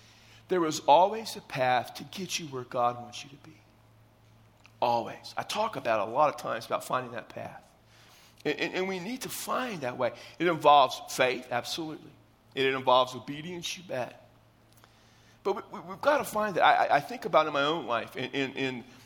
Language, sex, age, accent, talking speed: English, male, 40-59, American, 210 wpm